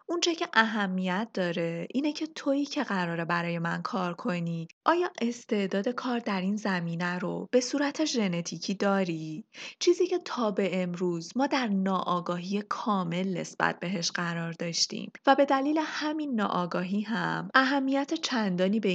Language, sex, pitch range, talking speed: Persian, female, 175-260 Hz, 145 wpm